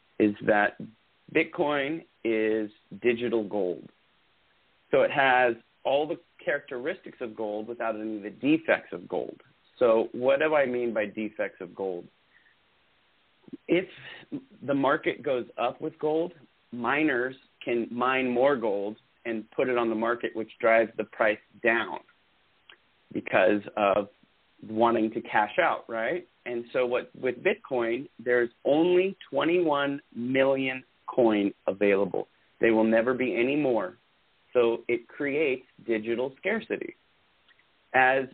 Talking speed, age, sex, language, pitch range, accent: 130 wpm, 30-49, male, English, 110-135 Hz, American